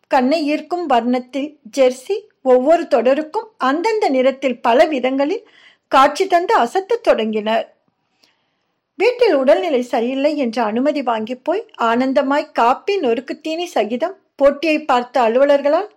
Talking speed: 105 wpm